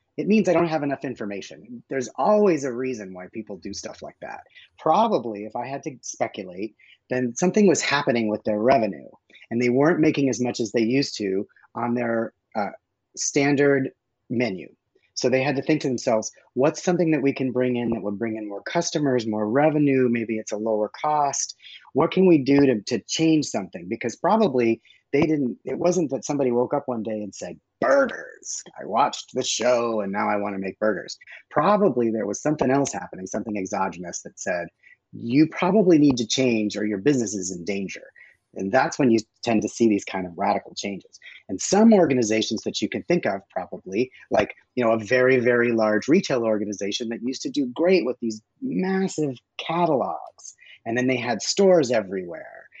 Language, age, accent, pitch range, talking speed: English, 30-49, American, 110-145 Hz, 195 wpm